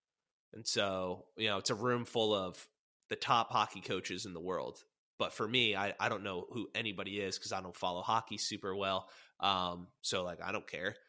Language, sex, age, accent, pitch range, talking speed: English, male, 20-39, American, 95-120 Hz, 210 wpm